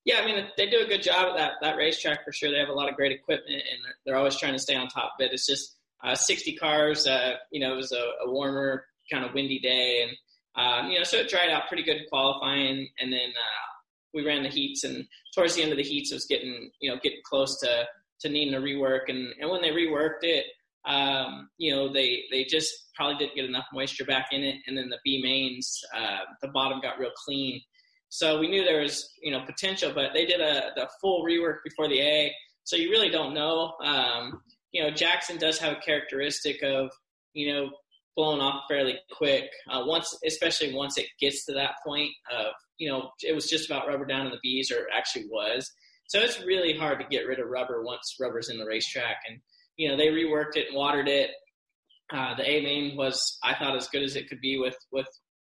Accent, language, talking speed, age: American, English, 235 wpm, 20-39